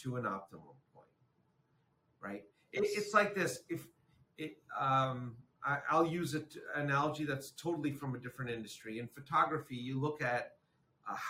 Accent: American